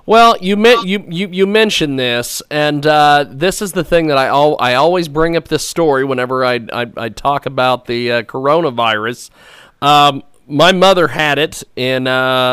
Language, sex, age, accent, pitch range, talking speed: English, male, 40-59, American, 135-165 Hz, 185 wpm